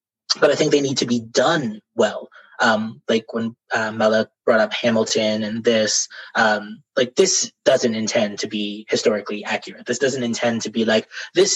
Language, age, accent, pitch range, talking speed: English, 20-39, American, 110-145 Hz, 180 wpm